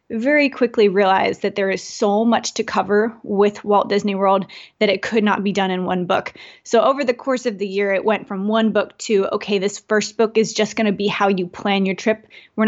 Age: 20-39